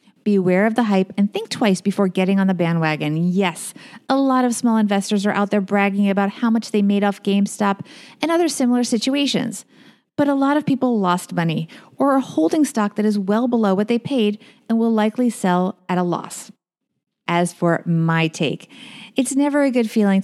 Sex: female